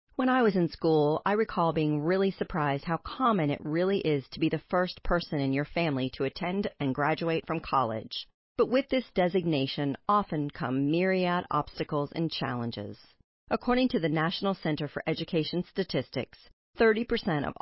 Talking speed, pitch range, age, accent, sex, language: 165 wpm, 145-195 Hz, 40-59, American, female, English